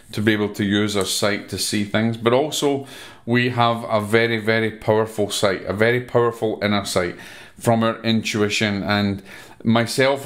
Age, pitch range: 40-59, 100-115 Hz